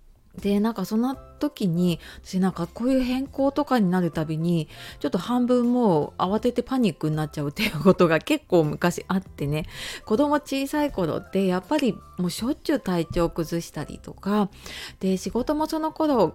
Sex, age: female, 30-49